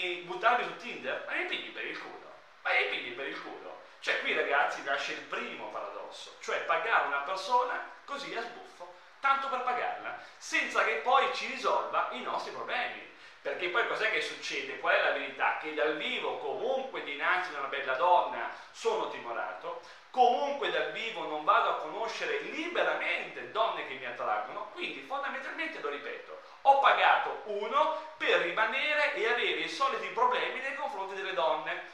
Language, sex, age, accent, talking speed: Italian, male, 40-59, native, 160 wpm